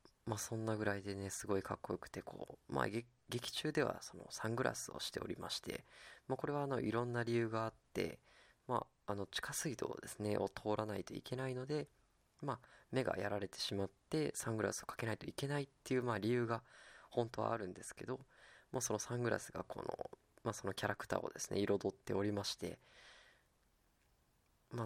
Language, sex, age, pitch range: Japanese, female, 20-39, 100-120 Hz